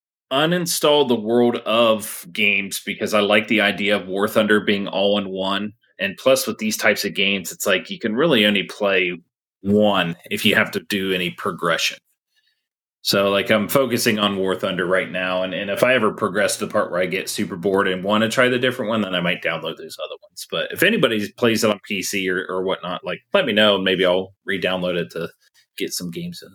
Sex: male